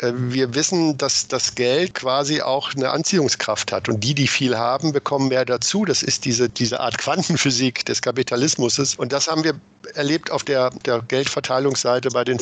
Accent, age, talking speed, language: German, 50-69, 180 wpm, German